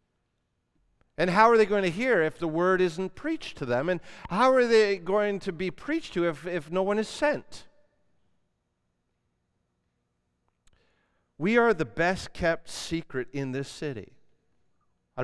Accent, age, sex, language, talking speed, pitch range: American, 40-59, male, English, 155 wpm, 135-195 Hz